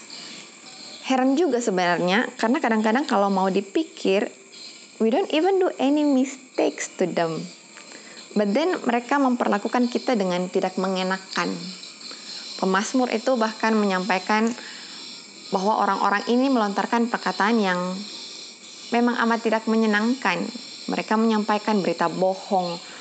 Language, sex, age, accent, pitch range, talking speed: Indonesian, female, 20-39, native, 205-275 Hz, 110 wpm